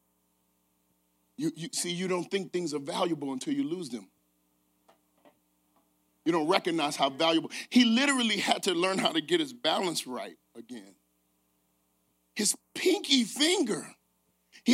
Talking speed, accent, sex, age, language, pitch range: 140 wpm, American, male, 40-59, English, 195-290 Hz